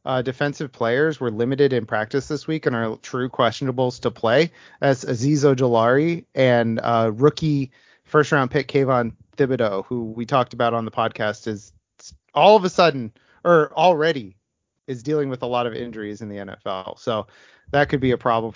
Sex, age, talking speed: male, 30-49, 180 wpm